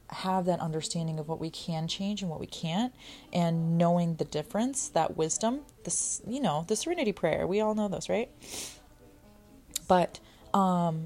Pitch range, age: 160-190 Hz, 30-49